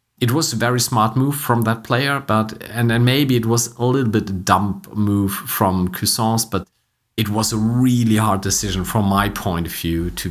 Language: English